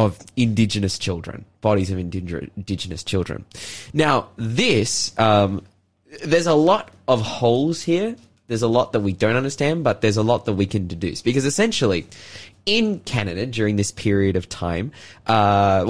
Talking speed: 160 wpm